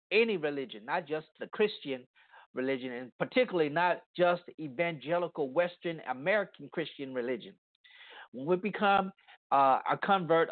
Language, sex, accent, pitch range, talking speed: English, male, American, 150-205 Hz, 125 wpm